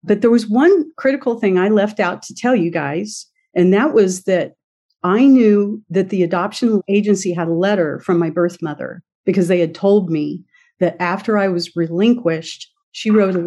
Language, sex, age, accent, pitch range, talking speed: English, female, 50-69, American, 170-215 Hz, 190 wpm